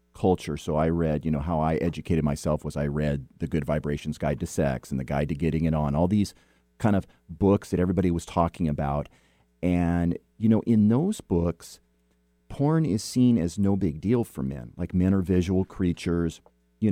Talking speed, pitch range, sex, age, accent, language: 200 wpm, 75-105 Hz, male, 40-59, American, English